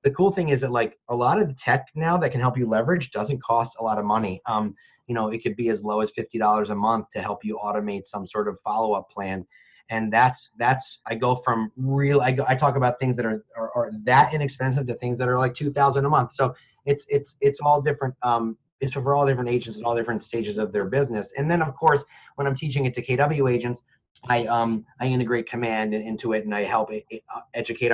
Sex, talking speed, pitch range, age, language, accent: male, 245 wpm, 110-135 Hz, 30-49, English, American